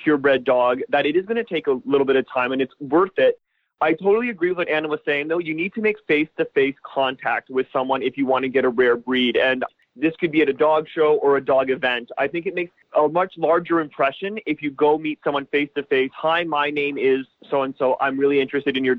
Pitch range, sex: 130-155 Hz, male